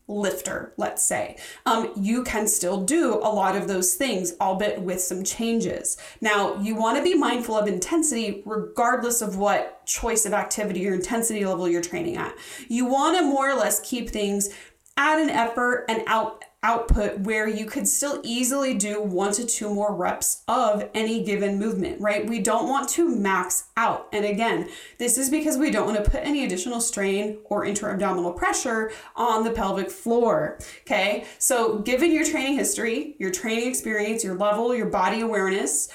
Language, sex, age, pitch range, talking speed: English, female, 30-49, 200-255 Hz, 180 wpm